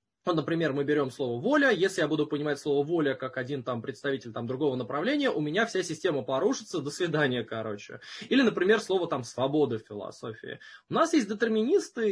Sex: male